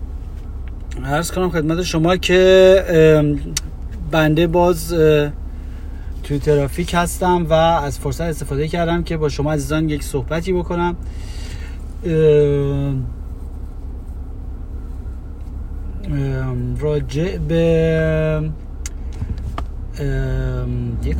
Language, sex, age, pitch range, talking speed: Persian, male, 30-49, 75-100 Hz, 70 wpm